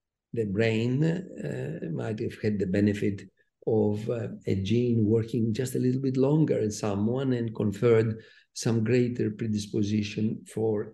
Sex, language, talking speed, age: male, English, 145 wpm, 50-69